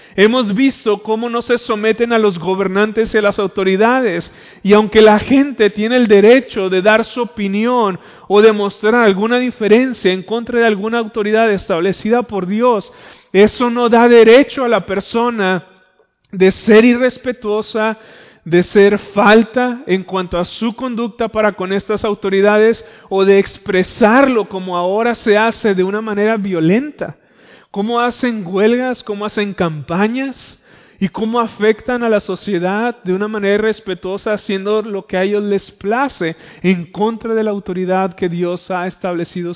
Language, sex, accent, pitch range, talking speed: Spanish, male, Colombian, 185-225 Hz, 155 wpm